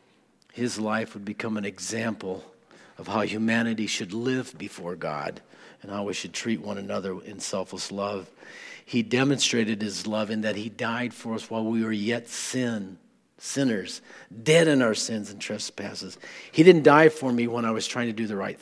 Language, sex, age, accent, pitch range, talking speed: English, male, 50-69, American, 105-125 Hz, 185 wpm